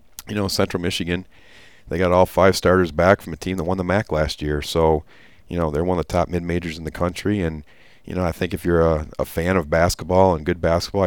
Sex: male